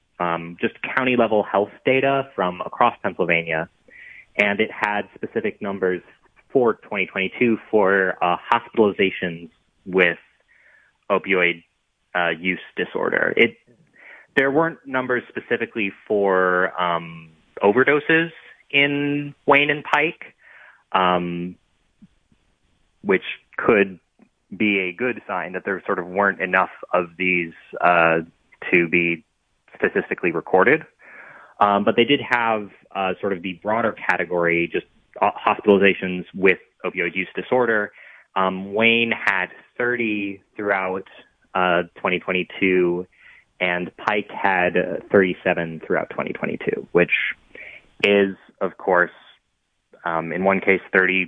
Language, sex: English, male